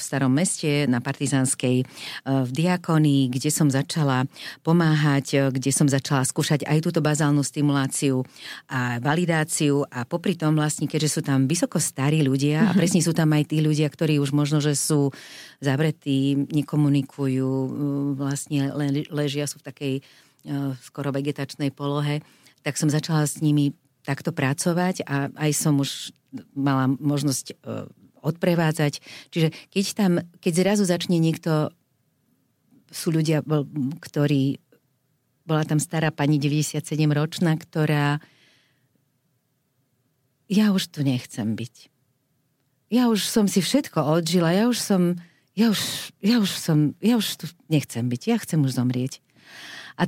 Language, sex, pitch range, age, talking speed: Slovak, female, 140-170 Hz, 40-59, 135 wpm